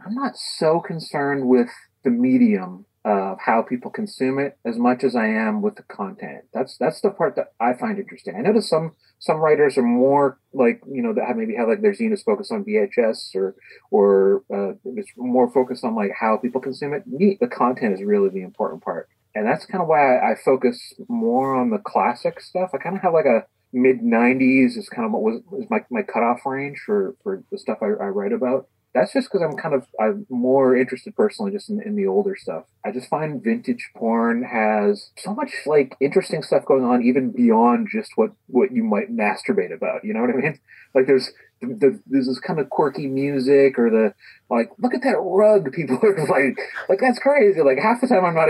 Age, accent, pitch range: 30-49, American, 130-215 Hz